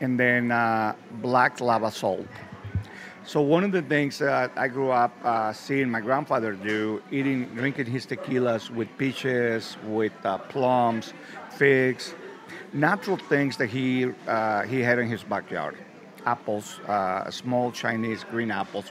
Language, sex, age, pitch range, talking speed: English, male, 50-69, 115-140 Hz, 145 wpm